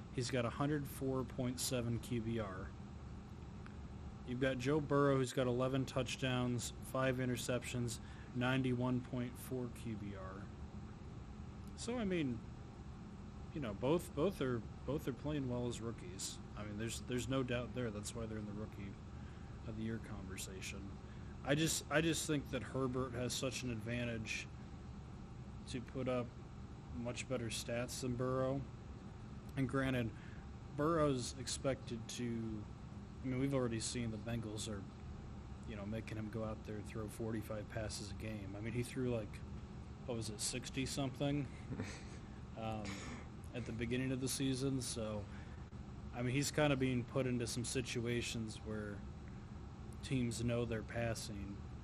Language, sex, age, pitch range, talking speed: English, male, 20-39, 110-130 Hz, 145 wpm